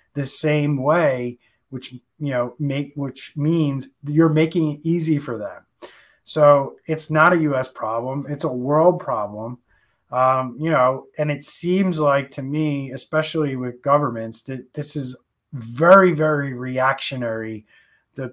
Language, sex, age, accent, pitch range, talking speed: English, male, 30-49, American, 125-150 Hz, 145 wpm